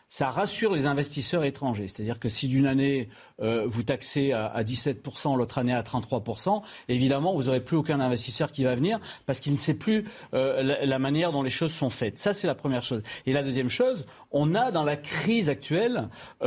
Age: 40-59